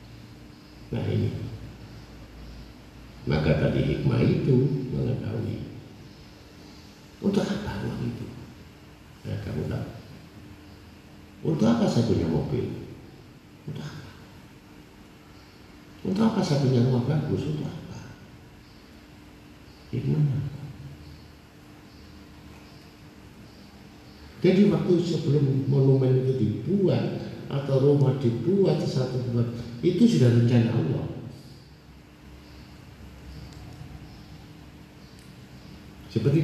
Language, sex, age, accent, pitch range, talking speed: Indonesian, male, 50-69, native, 100-150 Hz, 75 wpm